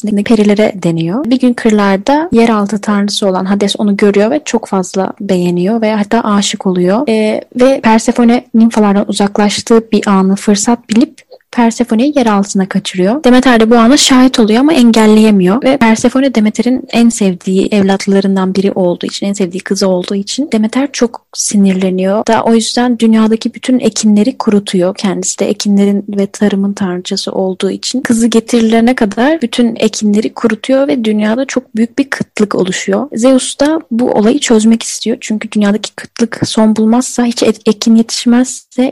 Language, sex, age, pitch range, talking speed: Turkish, female, 10-29, 200-250 Hz, 155 wpm